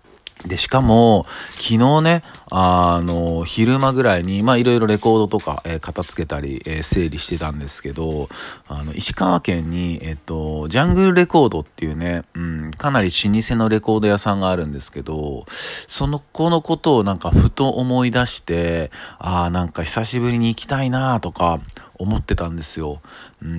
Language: Japanese